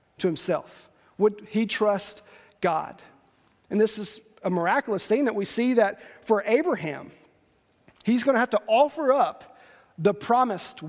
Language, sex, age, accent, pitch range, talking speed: English, male, 40-59, American, 185-225 Hz, 150 wpm